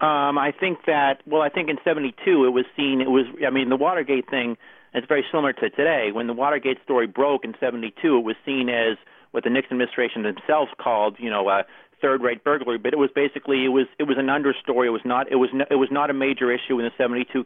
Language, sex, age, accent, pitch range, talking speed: English, male, 40-59, American, 115-130 Hz, 245 wpm